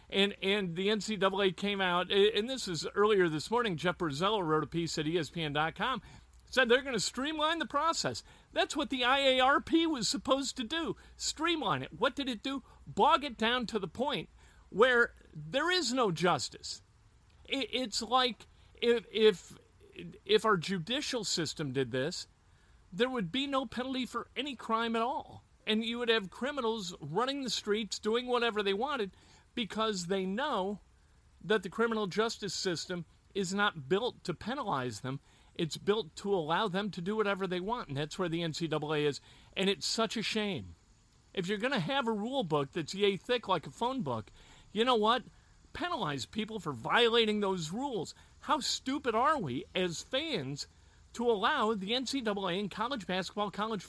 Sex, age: male, 50-69